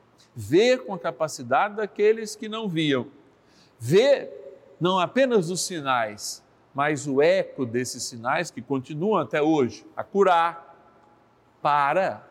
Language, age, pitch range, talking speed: Portuguese, 50-69, 130-190 Hz, 120 wpm